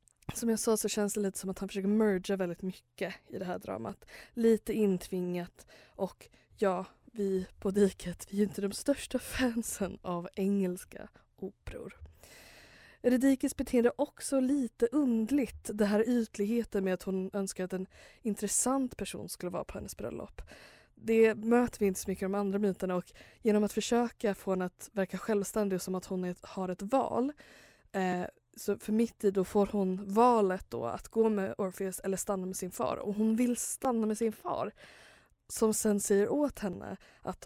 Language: Swedish